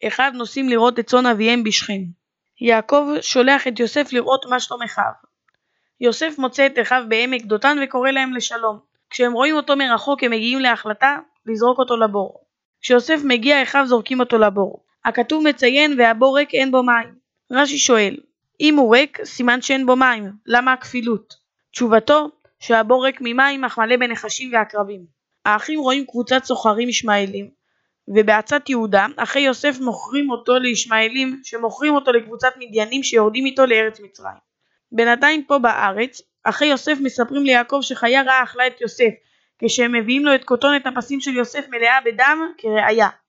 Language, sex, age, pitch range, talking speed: Hebrew, female, 20-39, 225-270 Hz, 150 wpm